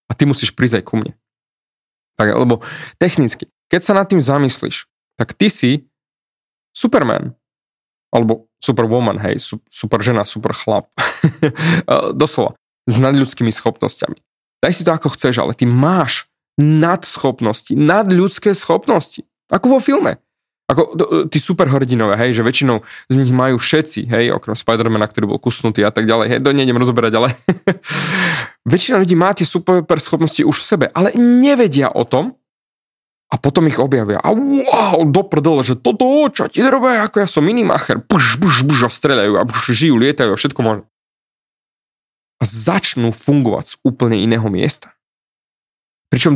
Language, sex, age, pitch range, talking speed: Slovak, male, 20-39, 120-175 Hz, 145 wpm